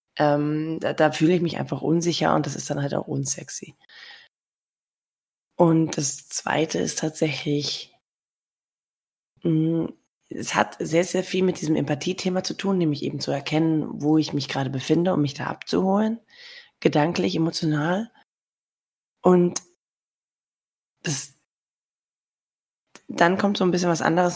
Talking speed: 135 wpm